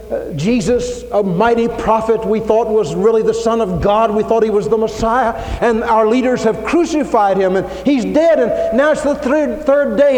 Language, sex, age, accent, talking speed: English, male, 60-79, American, 200 wpm